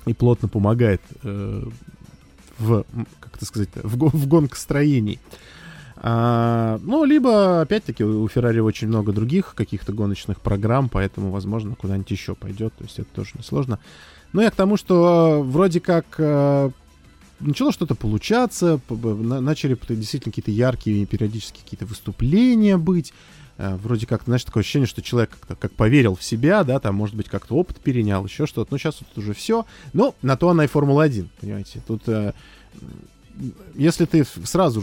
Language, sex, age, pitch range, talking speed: Russian, male, 20-39, 105-145 Hz, 160 wpm